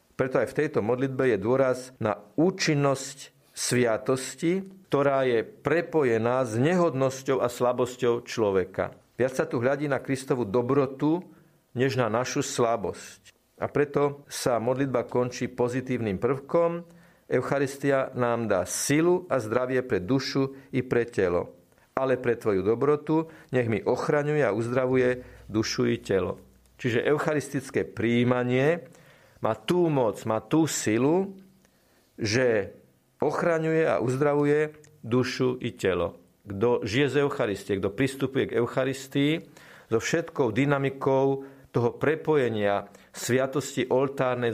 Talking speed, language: 120 wpm, Slovak